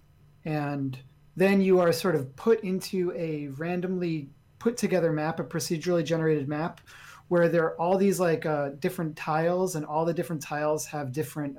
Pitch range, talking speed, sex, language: 145-180 Hz, 170 wpm, male, English